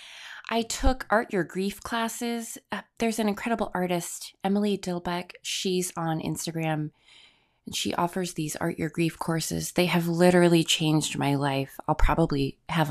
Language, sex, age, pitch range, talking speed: English, female, 20-39, 145-200 Hz, 155 wpm